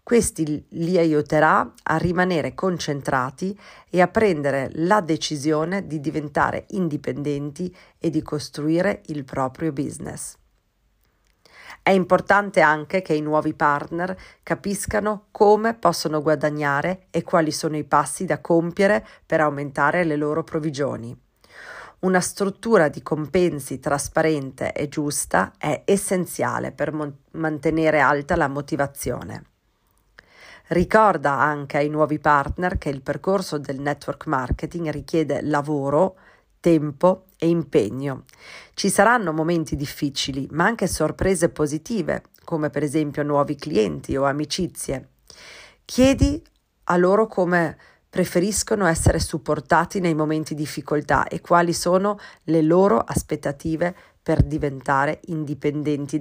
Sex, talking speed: female, 115 wpm